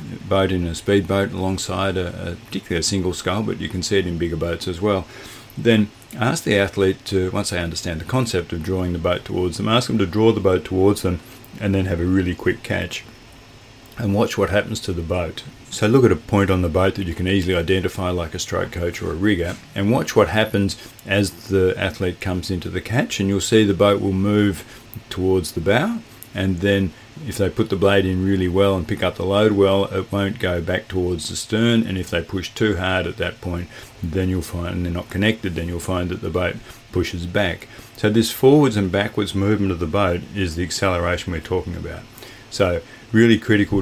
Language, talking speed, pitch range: English, 225 wpm, 90-105 Hz